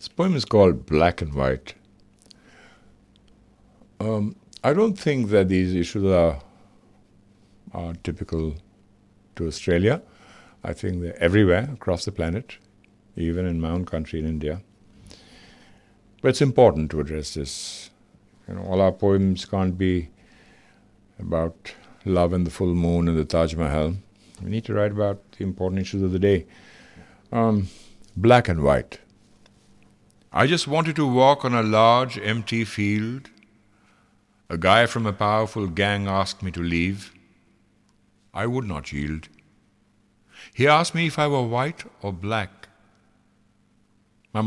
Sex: male